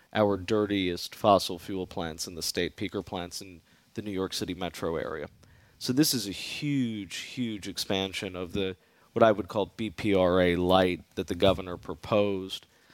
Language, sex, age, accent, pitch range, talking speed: English, male, 30-49, American, 90-105 Hz, 165 wpm